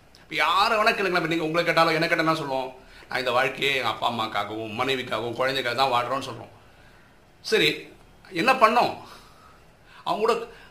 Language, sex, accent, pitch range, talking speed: Tamil, male, native, 130-175 Hz, 145 wpm